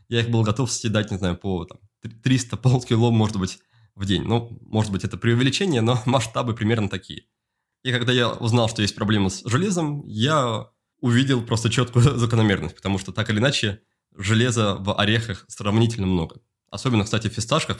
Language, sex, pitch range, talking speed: Russian, male, 105-125 Hz, 170 wpm